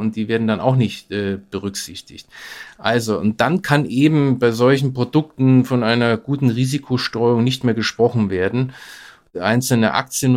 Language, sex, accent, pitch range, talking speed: German, male, German, 110-130 Hz, 150 wpm